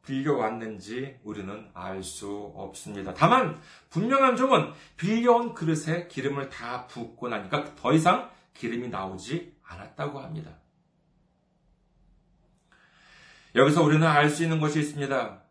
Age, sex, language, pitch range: 40-59, male, Korean, 145-220 Hz